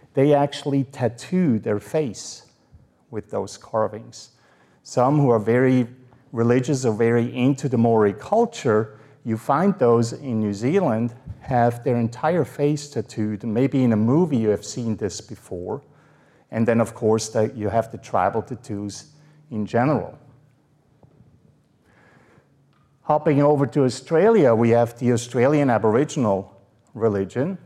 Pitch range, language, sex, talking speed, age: 110-145 Hz, English, male, 130 wpm, 50-69